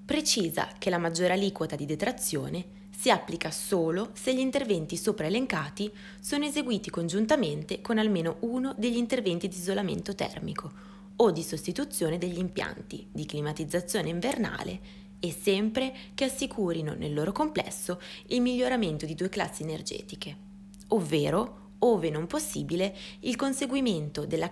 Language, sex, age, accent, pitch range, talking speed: Italian, female, 20-39, native, 175-225 Hz, 130 wpm